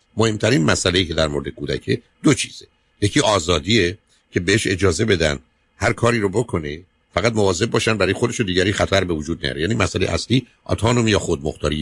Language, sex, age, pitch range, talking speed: Persian, male, 50-69, 85-115 Hz, 185 wpm